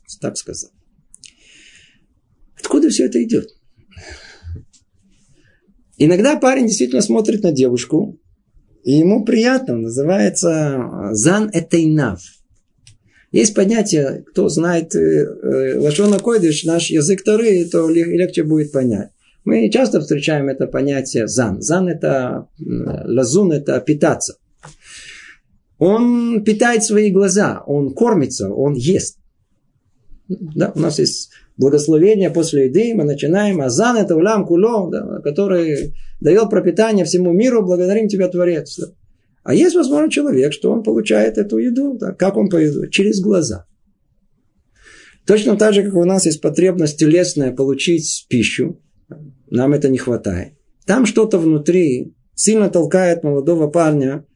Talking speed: 125 wpm